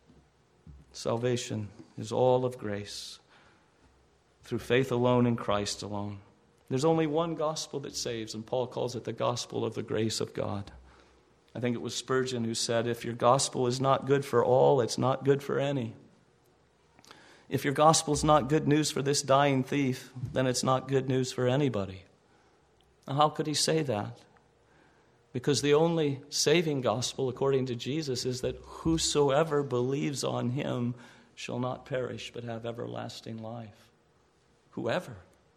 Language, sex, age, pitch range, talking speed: English, male, 40-59, 115-160 Hz, 160 wpm